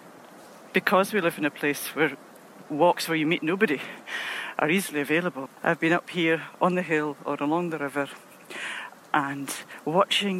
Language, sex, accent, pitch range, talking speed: English, female, British, 150-195 Hz, 160 wpm